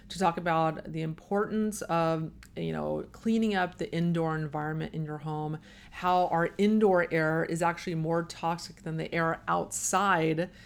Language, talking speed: English, 160 wpm